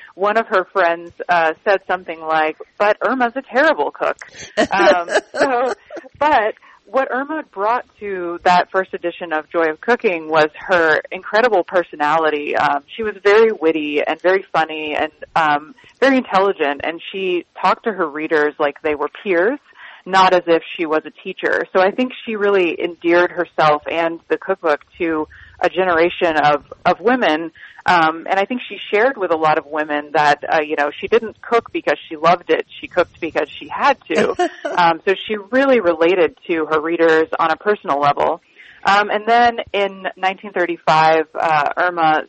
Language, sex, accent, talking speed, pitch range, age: English, female, American, 170 wpm, 155-200 Hz, 30-49